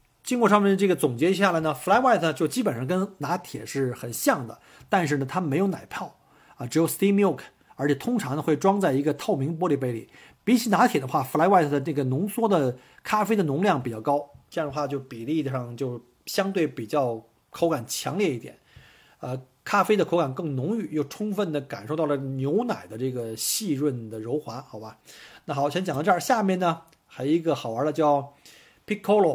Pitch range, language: 135-195 Hz, Chinese